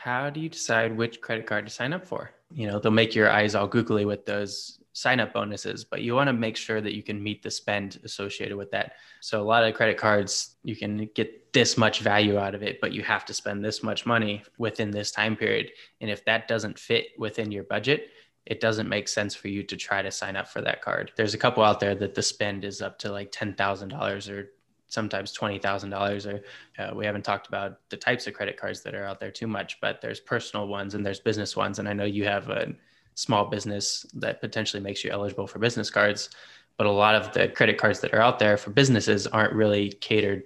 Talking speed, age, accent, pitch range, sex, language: 240 wpm, 10-29, American, 100-110 Hz, male, English